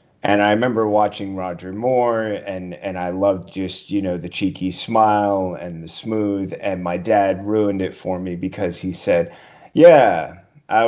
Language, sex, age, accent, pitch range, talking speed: English, male, 30-49, American, 90-105 Hz, 170 wpm